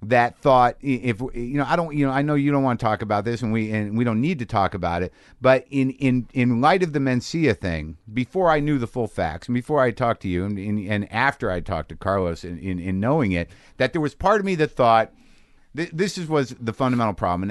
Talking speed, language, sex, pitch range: 260 wpm, English, male, 105-140 Hz